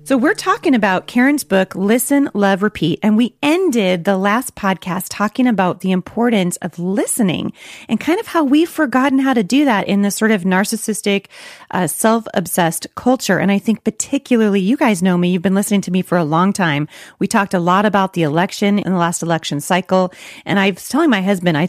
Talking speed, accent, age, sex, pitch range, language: 210 wpm, American, 30-49, female, 180-230 Hz, English